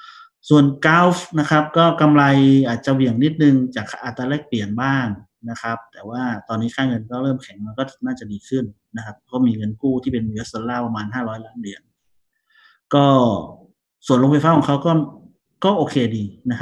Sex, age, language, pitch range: male, 30-49, Thai, 115-150 Hz